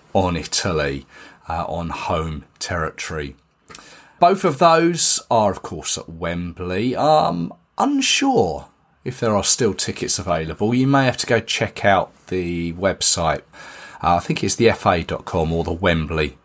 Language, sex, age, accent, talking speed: English, male, 30-49, British, 150 wpm